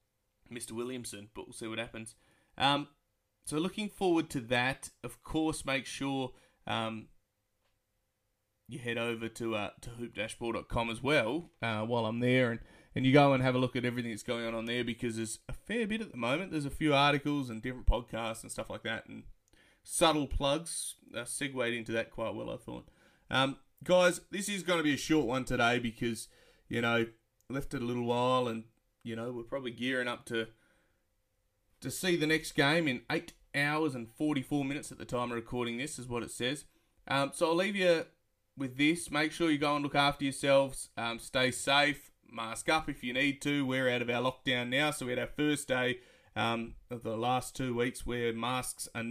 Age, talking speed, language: 20-39, 210 wpm, English